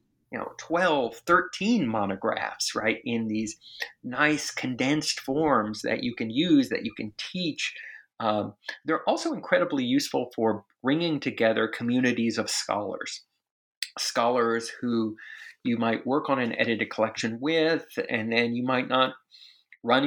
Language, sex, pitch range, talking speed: English, male, 110-160 Hz, 140 wpm